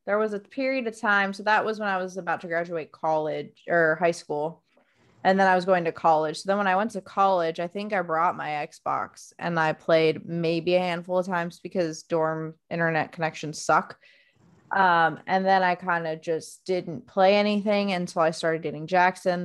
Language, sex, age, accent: English, female, 20-39, American